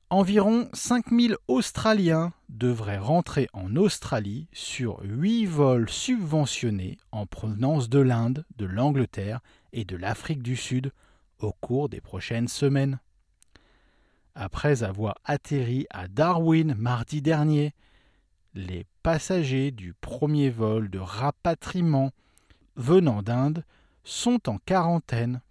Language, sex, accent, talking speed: English, male, French, 110 wpm